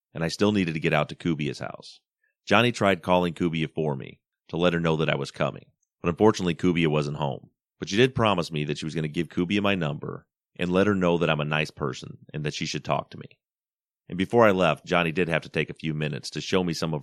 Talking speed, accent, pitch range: 270 wpm, American, 75-95 Hz